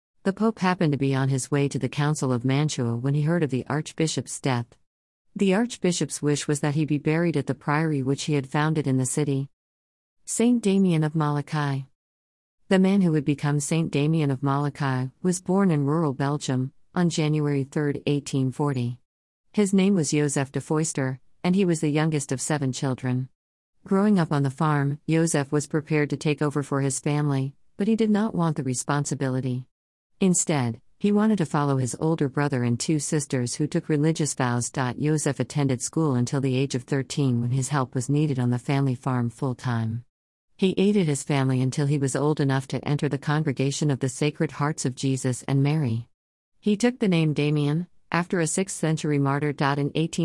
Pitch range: 135-155 Hz